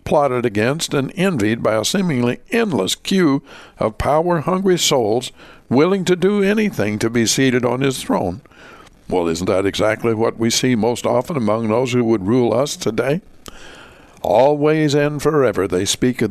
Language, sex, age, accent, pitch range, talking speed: English, male, 60-79, American, 110-155 Hz, 160 wpm